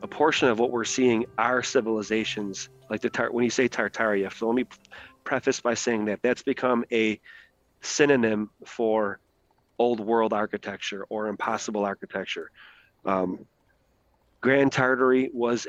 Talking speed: 140 wpm